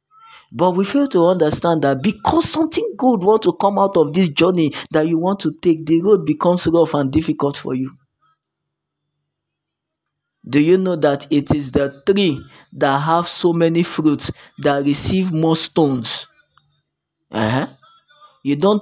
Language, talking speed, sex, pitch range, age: English, 155 wpm, male, 150-195 Hz, 20-39